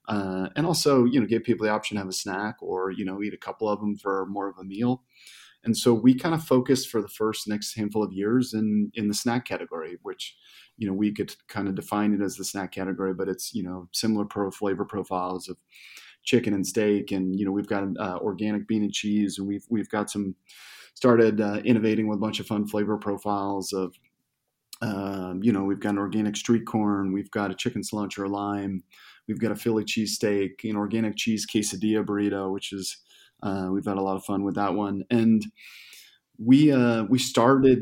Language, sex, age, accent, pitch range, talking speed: English, male, 30-49, American, 100-110 Hz, 215 wpm